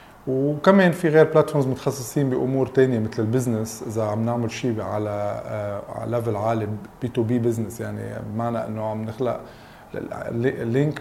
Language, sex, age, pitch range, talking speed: English, male, 20-39, 115-140 Hz, 140 wpm